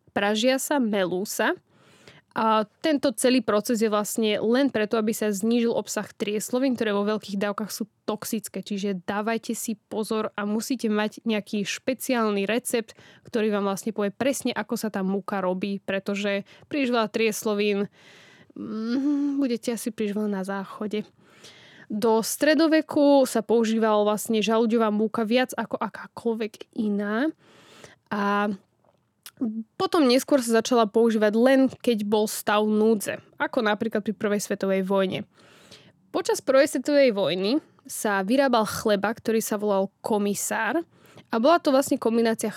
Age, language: 20-39, Slovak